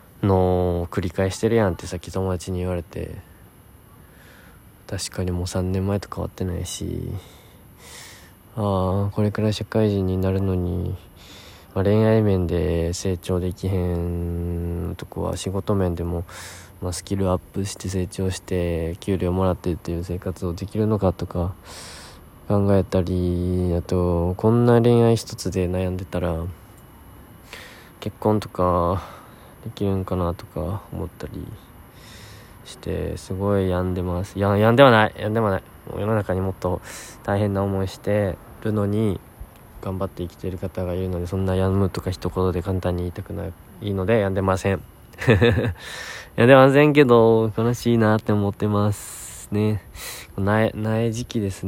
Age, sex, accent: 20-39, male, native